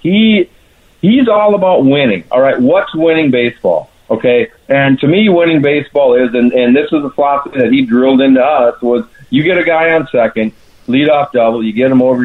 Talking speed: 205 wpm